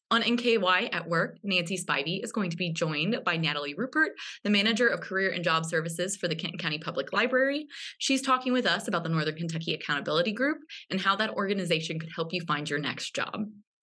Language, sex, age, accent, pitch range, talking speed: English, female, 20-39, American, 160-220 Hz, 210 wpm